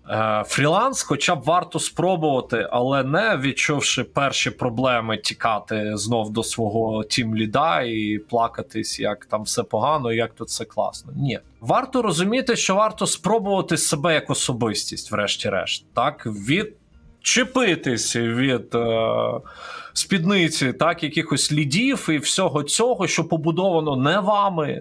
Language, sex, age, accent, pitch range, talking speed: Ukrainian, male, 20-39, native, 130-175 Hz, 120 wpm